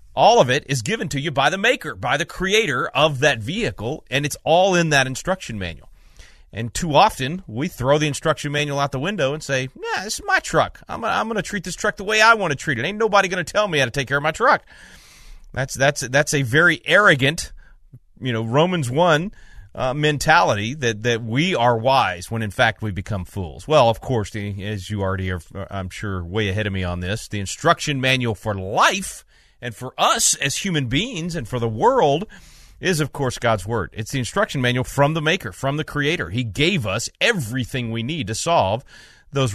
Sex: male